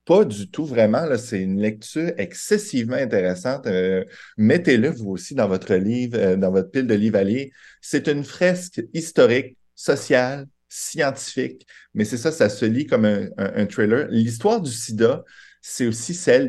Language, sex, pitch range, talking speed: French, male, 100-135 Hz, 170 wpm